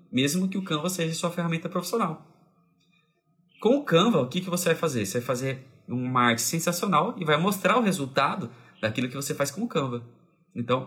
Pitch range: 125-170 Hz